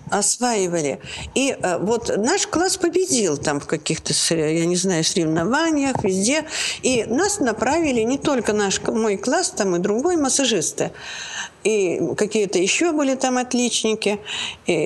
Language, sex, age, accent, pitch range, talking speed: Russian, female, 50-69, native, 195-275 Hz, 135 wpm